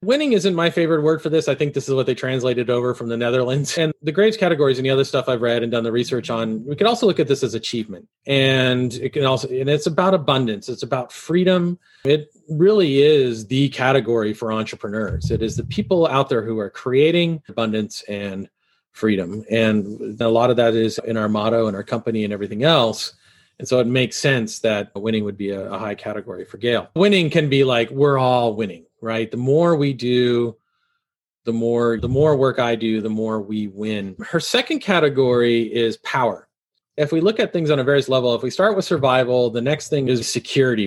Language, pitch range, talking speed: English, 110-145 Hz, 215 wpm